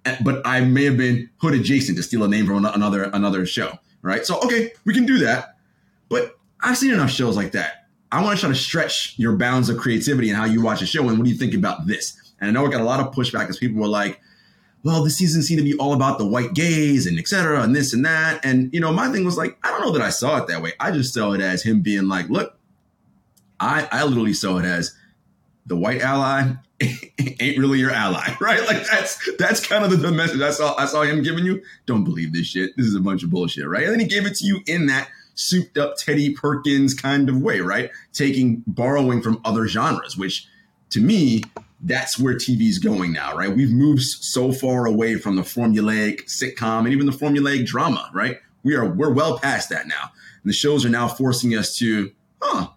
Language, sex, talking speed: English, male, 235 wpm